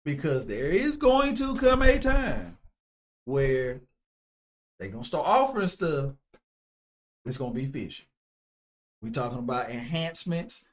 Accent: American